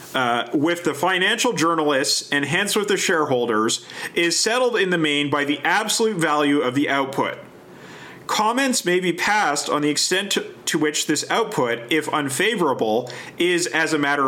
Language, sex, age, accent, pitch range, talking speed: English, male, 40-59, American, 140-185 Hz, 170 wpm